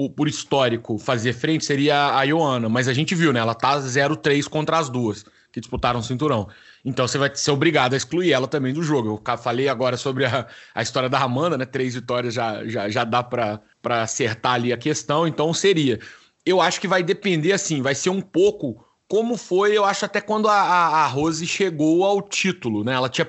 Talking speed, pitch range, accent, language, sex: 210 wpm, 135-195 Hz, Brazilian, Portuguese, male